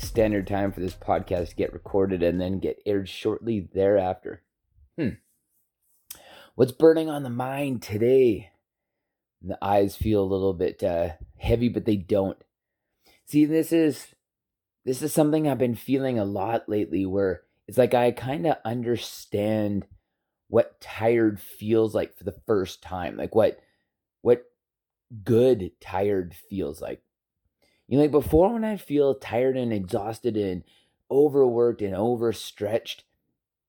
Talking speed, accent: 140 wpm, American